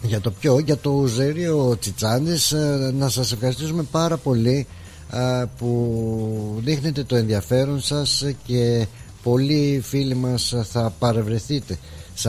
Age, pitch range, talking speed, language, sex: 60-79, 105-130 Hz, 115 wpm, Greek, male